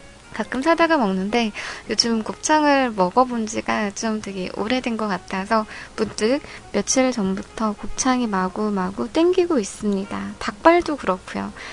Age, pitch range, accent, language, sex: 20-39, 200-330 Hz, native, Korean, female